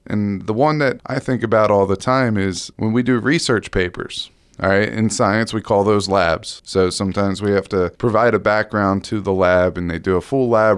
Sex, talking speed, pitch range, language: male, 230 wpm, 95-130 Hz, English